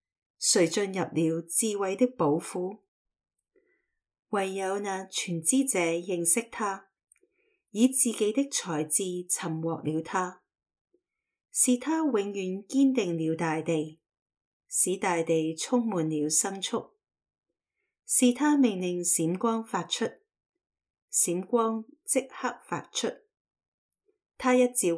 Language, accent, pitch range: Chinese, native, 165-245 Hz